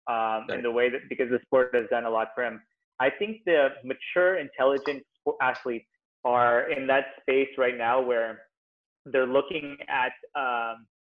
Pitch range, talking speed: 120-165 Hz, 170 wpm